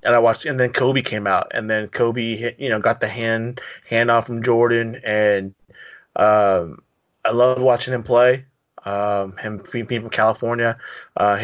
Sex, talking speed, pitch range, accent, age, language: male, 175 wpm, 105-120 Hz, American, 20-39, English